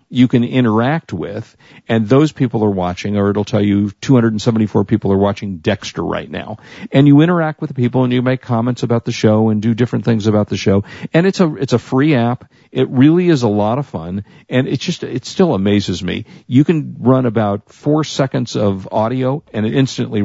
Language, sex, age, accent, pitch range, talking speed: English, male, 50-69, American, 105-130 Hz, 215 wpm